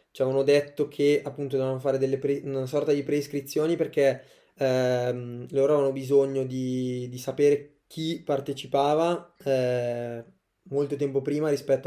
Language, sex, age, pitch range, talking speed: Italian, male, 20-39, 125-145 Hz, 140 wpm